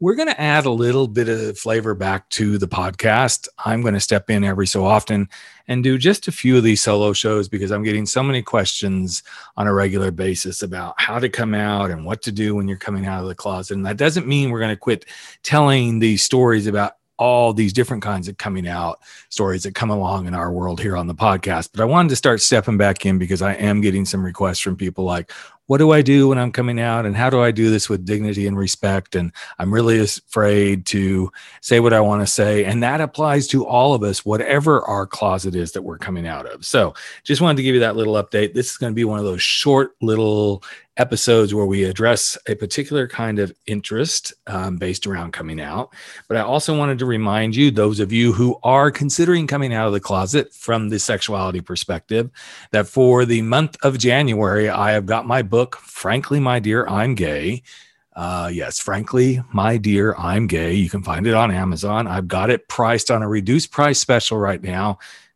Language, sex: English, male